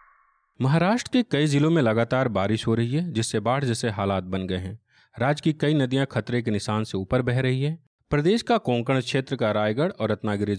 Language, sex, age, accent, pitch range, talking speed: Hindi, male, 40-59, native, 110-150 Hz, 210 wpm